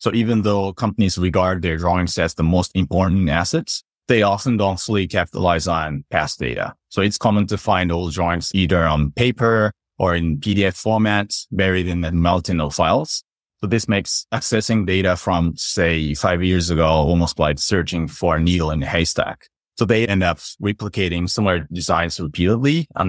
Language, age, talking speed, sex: English, 30-49, 175 wpm, male